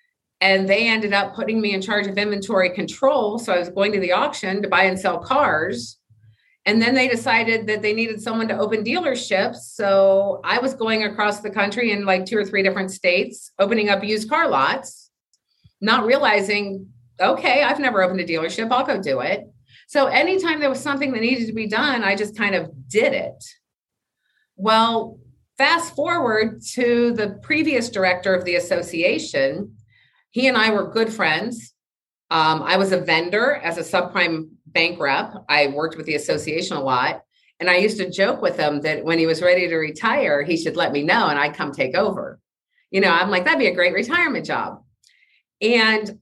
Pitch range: 170-225 Hz